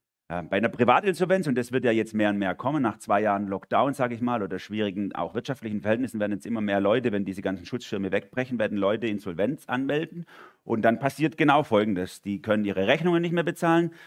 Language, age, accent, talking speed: German, 40-59, German, 215 wpm